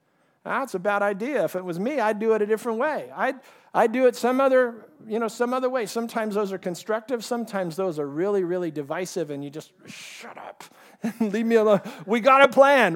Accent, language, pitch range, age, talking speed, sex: American, English, 185-230 Hz, 50-69, 225 wpm, male